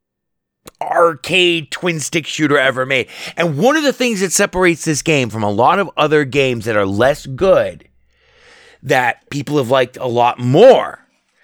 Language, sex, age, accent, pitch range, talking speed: English, male, 30-49, American, 140-195 Hz, 170 wpm